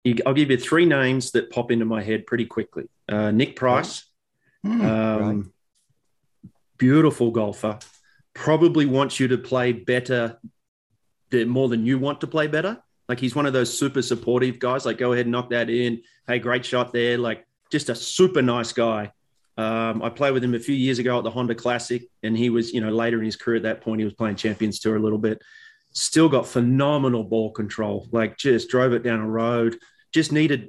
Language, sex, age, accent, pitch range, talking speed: English, male, 30-49, Australian, 115-130 Hz, 200 wpm